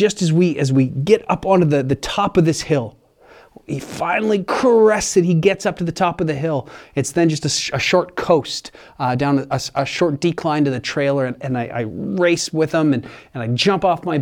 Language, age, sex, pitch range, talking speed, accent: English, 30-49, male, 135-175 Hz, 240 wpm, American